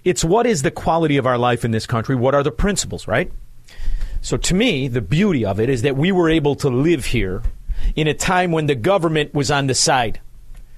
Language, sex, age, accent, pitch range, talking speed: English, male, 40-59, American, 120-155 Hz, 230 wpm